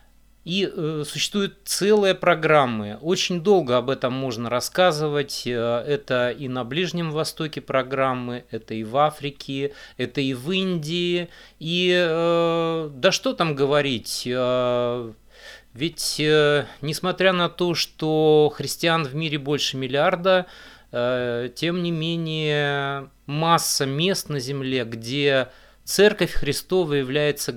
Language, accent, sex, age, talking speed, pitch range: Russian, native, male, 30-49, 120 wpm, 125-160 Hz